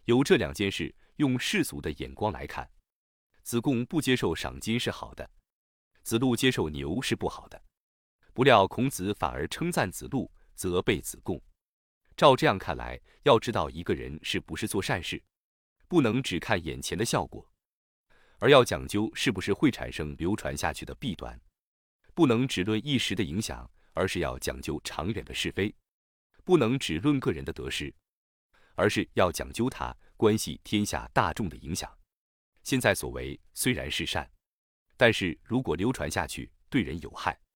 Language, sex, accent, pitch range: Chinese, male, native, 75-115 Hz